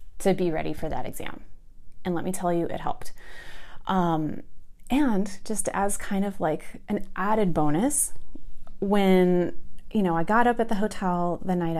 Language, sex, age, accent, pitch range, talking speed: English, female, 30-49, American, 165-195 Hz, 175 wpm